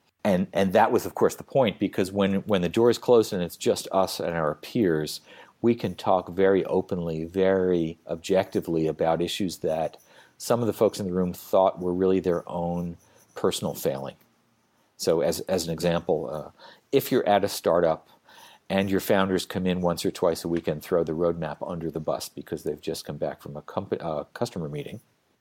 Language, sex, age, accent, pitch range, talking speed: English, male, 50-69, American, 85-105 Hz, 200 wpm